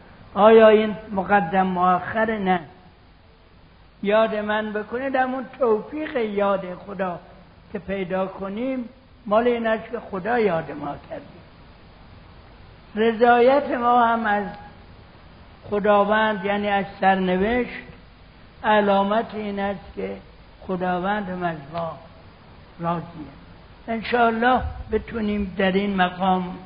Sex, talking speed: male, 95 wpm